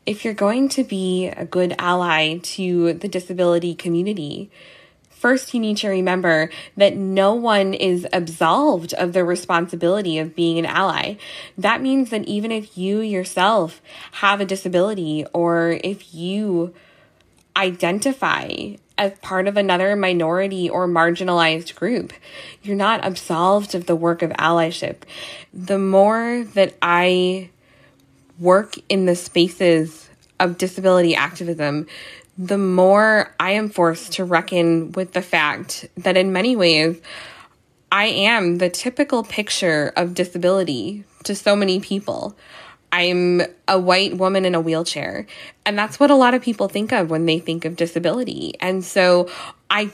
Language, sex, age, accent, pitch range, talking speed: English, female, 20-39, American, 170-200 Hz, 145 wpm